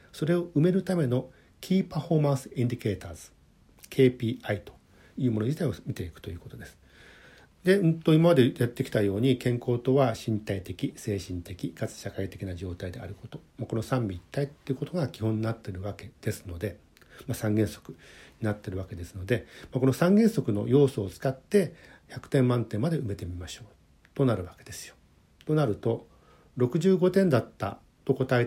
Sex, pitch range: male, 105-140 Hz